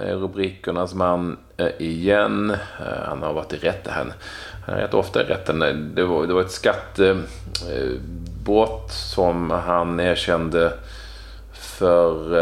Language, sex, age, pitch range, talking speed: Swedish, male, 30-49, 85-105 Hz, 110 wpm